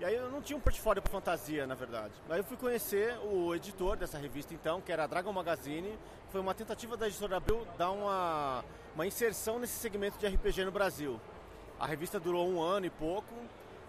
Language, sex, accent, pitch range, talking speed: Portuguese, male, Brazilian, 155-205 Hz, 205 wpm